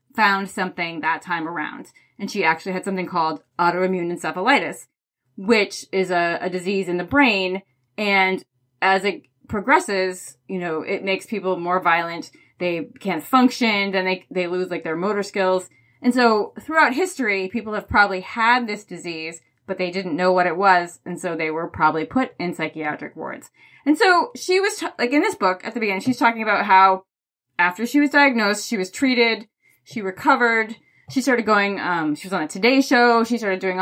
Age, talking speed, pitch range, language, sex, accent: 20-39, 190 wpm, 185-245 Hz, English, female, American